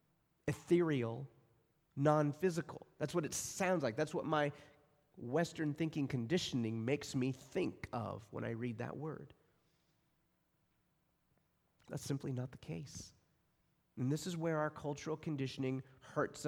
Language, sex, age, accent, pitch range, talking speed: English, male, 30-49, American, 120-155 Hz, 125 wpm